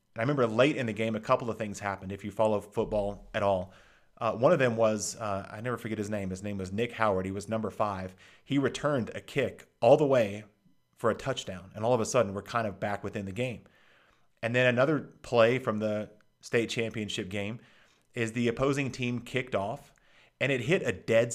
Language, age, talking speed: English, 30-49, 220 wpm